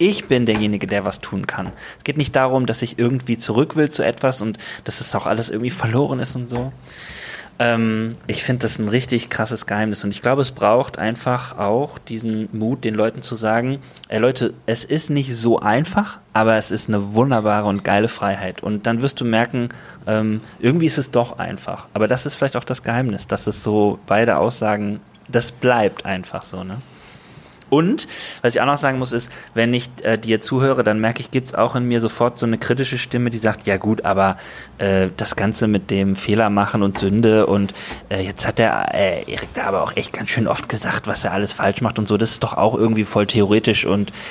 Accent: German